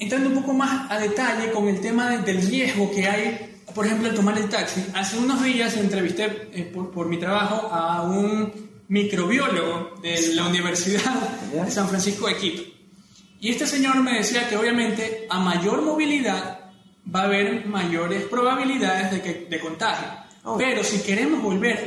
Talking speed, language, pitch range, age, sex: 165 wpm, Spanish, 190-230 Hz, 20-39, male